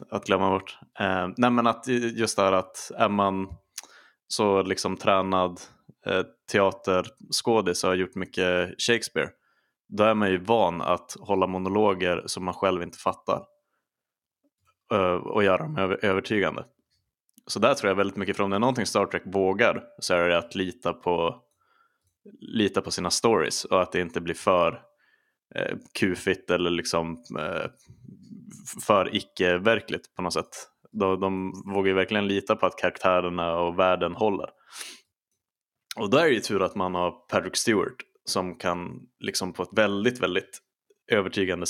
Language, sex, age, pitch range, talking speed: Swedish, male, 20-39, 90-105 Hz, 160 wpm